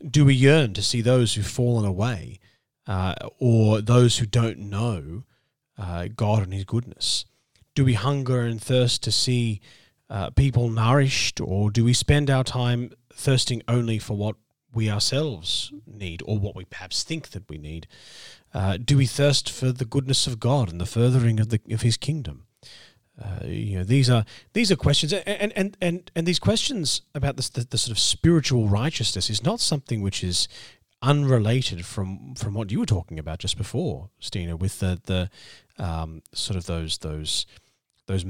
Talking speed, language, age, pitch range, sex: 180 wpm, English, 40-59, 100-130 Hz, male